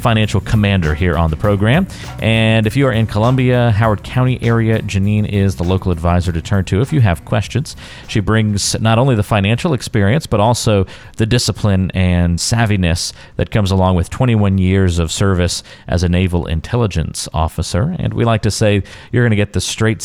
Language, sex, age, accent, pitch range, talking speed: English, male, 40-59, American, 90-115 Hz, 190 wpm